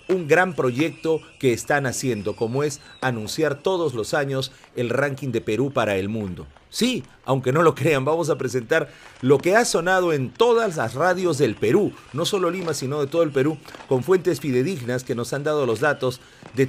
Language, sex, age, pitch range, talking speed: Spanish, male, 40-59, 130-165 Hz, 200 wpm